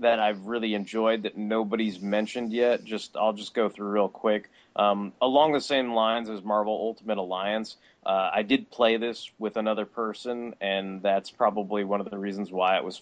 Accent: American